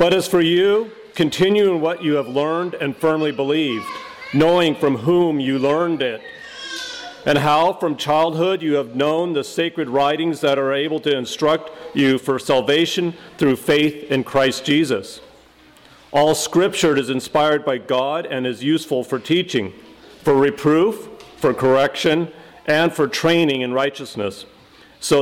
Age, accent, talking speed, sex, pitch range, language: 40-59, American, 150 wpm, male, 140-165 Hz, English